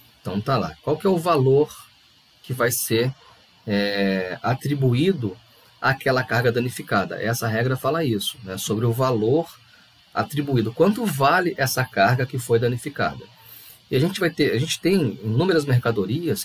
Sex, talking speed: male, 155 wpm